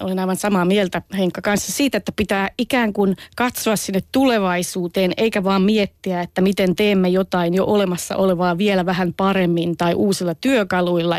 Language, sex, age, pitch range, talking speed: Finnish, female, 30-49, 185-220 Hz, 160 wpm